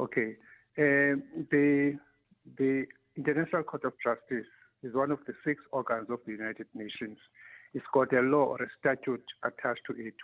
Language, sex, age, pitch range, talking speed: English, male, 50-69, 120-150 Hz, 165 wpm